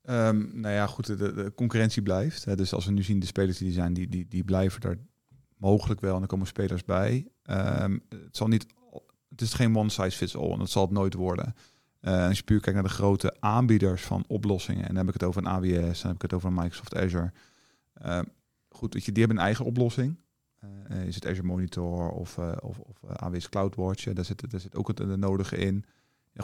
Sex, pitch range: male, 95-115 Hz